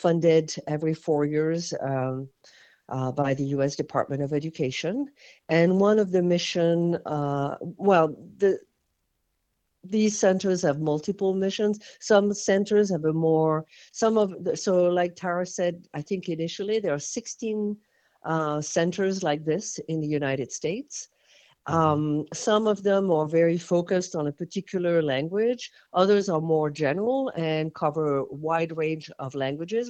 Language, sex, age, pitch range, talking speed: English, female, 50-69, 150-190 Hz, 145 wpm